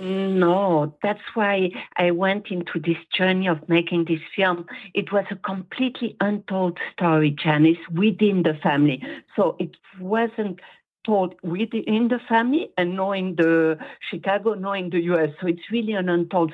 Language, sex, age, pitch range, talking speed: English, female, 50-69, 170-220 Hz, 150 wpm